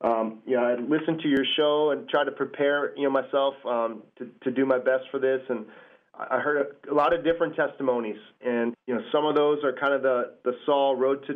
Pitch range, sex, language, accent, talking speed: 120-135 Hz, male, English, American, 240 wpm